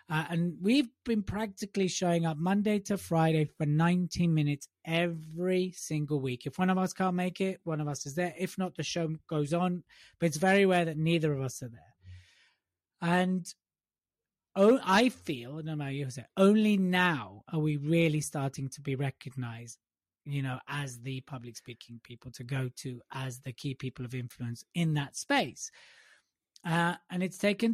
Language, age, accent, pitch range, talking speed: English, 30-49, British, 150-205 Hz, 180 wpm